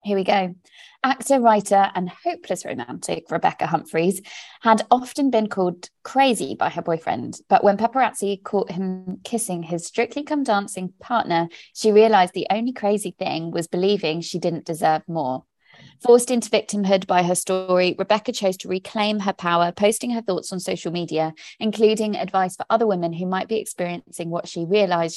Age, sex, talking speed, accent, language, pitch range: 20-39, female, 170 wpm, British, English, 170-210 Hz